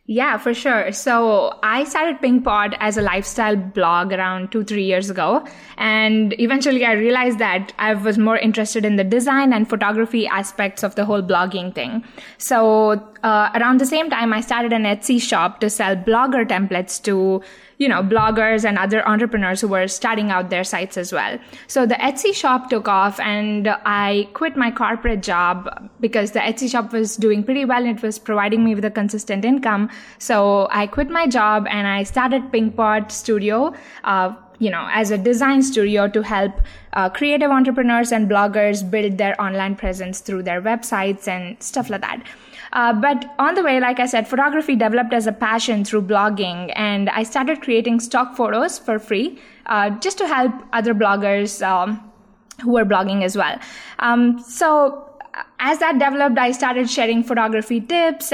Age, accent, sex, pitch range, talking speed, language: 20-39, Indian, female, 205-250 Hz, 180 wpm, English